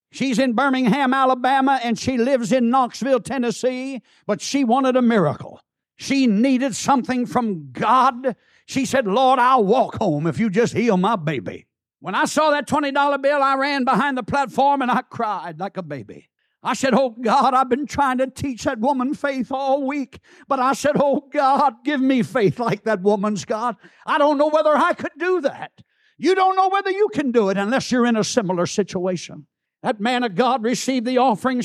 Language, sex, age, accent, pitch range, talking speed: English, male, 60-79, American, 205-270 Hz, 195 wpm